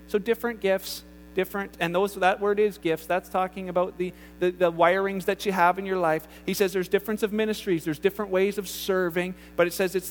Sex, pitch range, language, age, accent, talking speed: male, 175-225 Hz, English, 40-59, American, 225 wpm